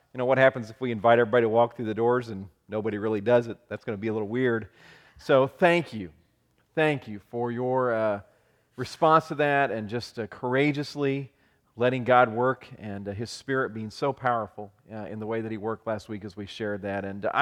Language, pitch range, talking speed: English, 115-135 Hz, 225 wpm